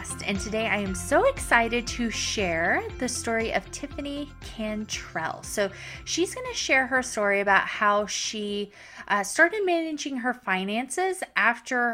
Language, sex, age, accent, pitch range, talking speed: English, female, 30-49, American, 205-295 Hz, 140 wpm